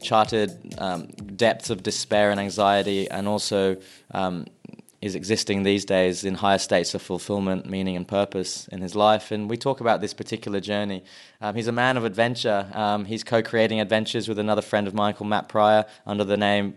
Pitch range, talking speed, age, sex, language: 100-110 Hz, 185 wpm, 20-39, male, English